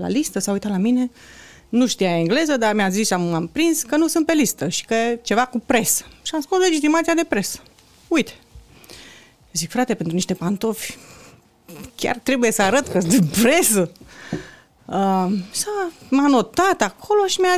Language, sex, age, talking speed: Romanian, female, 30-49, 180 wpm